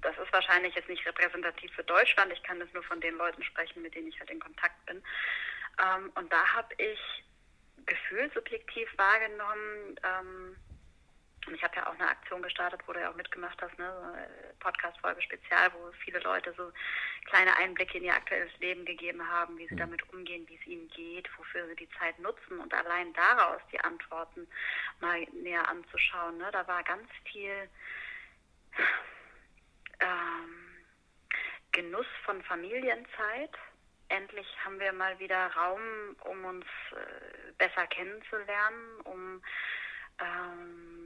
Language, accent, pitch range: German, German, 175-205 Hz